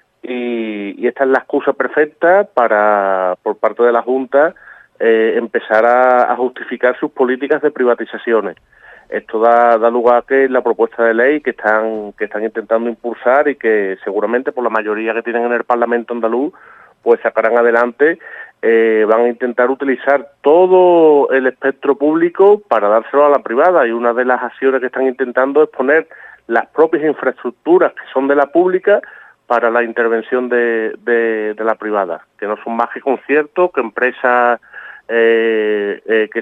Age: 30-49